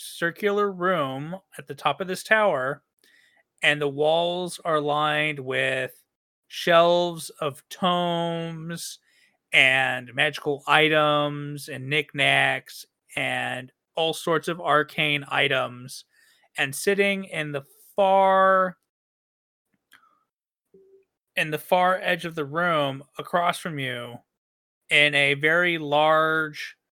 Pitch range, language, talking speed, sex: 140-170 Hz, English, 105 wpm, male